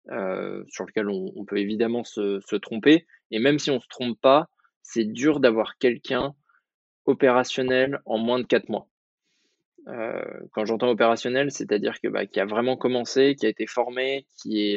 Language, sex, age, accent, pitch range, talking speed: French, male, 20-39, French, 110-130 Hz, 185 wpm